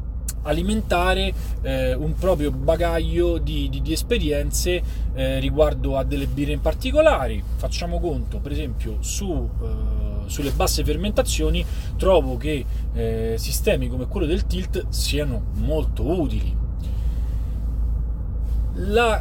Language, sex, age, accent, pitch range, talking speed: Italian, male, 30-49, native, 75-110 Hz, 115 wpm